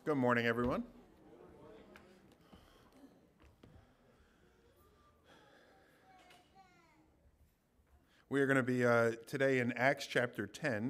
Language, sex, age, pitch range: English, male, 50-69, 110-150 Hz